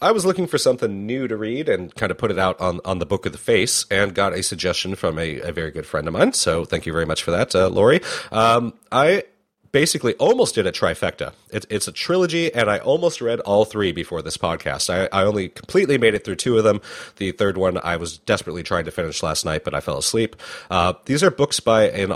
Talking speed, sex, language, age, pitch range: 250 wpm, male, English, 30-49, 90-120 Hz